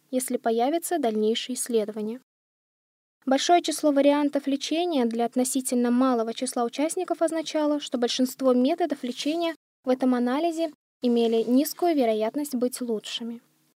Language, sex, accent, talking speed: Russian, female, native, 115 wpm